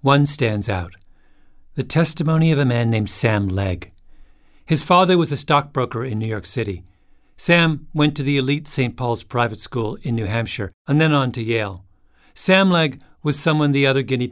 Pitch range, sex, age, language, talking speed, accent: 100-145 Hz, male, 50-69, English, 185 wpm, American